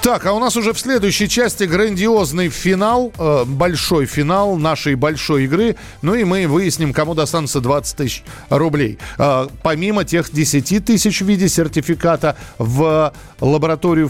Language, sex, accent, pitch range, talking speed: Russian, male, native, 140-175 Hz, 140 wpm